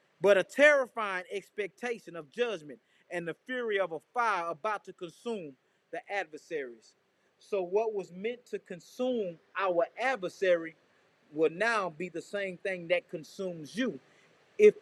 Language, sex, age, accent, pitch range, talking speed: English, male, 30-49, American, 195-300 Hz, 140 wpm